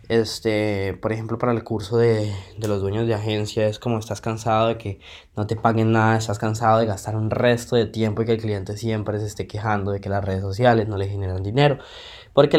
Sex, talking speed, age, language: male, 230 wpm, 20-39, Spanish